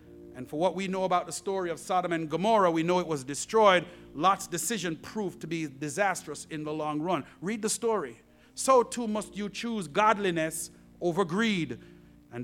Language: English